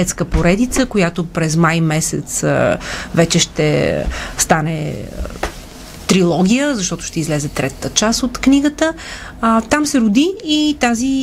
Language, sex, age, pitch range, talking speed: Bulgarian, female, 30-49, 160-215 Hz, 120 wpm